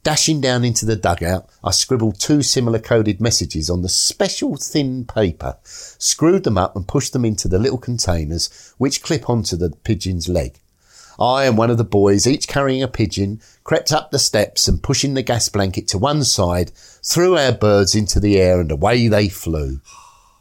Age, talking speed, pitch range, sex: 50-69, 190 wpm, 95-135 Hz, male